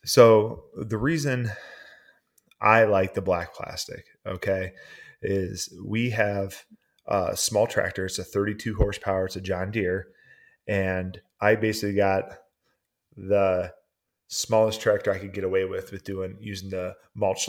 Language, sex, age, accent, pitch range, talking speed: English, male, 20-39, American, 95-105 Hz, 135 wpm